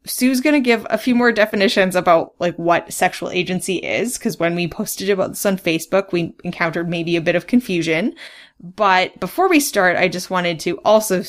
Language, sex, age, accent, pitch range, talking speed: English, female, 10-29, American, 170-210 Hz, 200 wpm